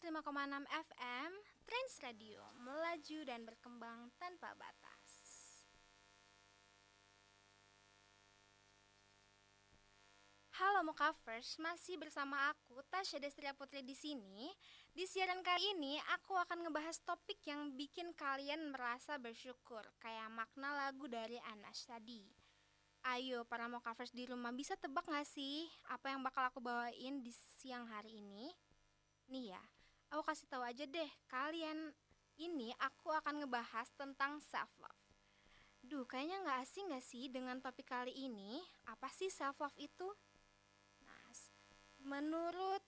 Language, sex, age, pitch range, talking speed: Indonesian, female, 20-39, 230-315 Hz, 120 wpm